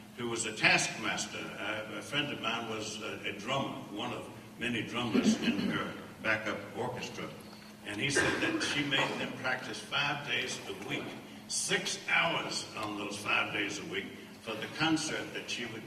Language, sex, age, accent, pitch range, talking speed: English, male, 60-79, American, 105-115 Hz, 170 wpm